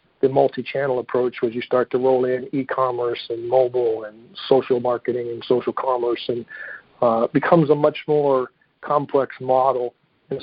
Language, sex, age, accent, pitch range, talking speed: English, male, 50-69, American, 125-140 Hz, 155 wpm